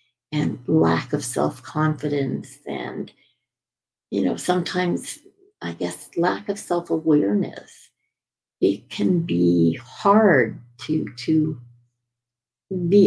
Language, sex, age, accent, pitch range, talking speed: English, female, 60-79, American, 120-175 Hz, 90 wpm